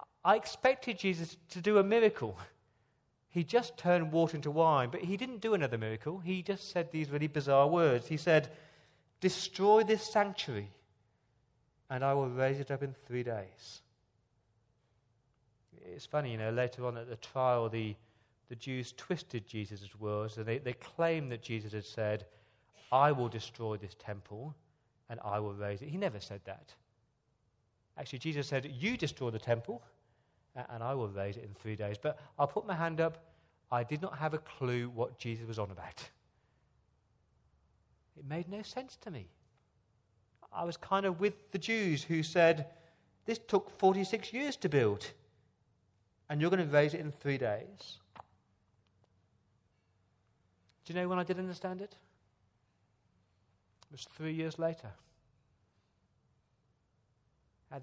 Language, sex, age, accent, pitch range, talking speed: English, male, 40-59, British, 110-165 Hz, 160 wpm